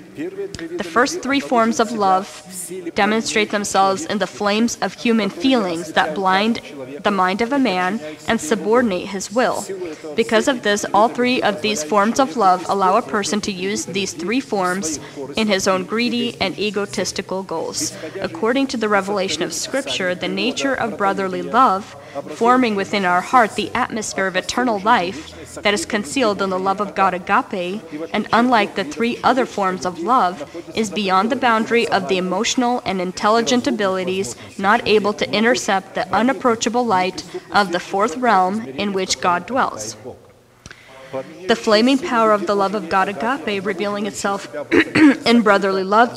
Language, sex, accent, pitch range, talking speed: English, female, American, 185-235 Hz, 165 wpm